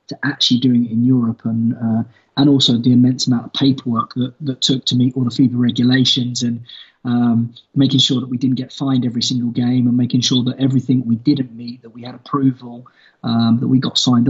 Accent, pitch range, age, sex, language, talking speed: British, 120-135 Hz, 20-39, male, English, 225 wpm